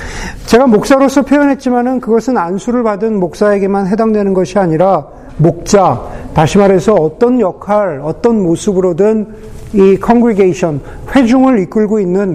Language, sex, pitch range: Korean, male, 170-220 Hz